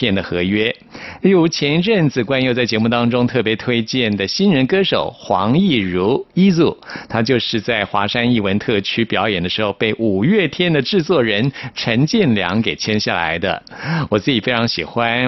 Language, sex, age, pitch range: Chinese, male, 50-69, 105-140 Hz